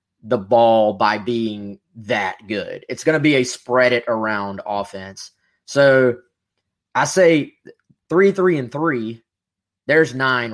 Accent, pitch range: American, 105-135 Hz